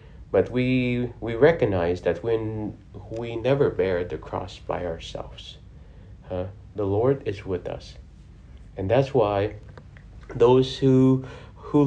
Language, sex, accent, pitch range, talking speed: English, male, American, 95-115 Hz, 125 wpm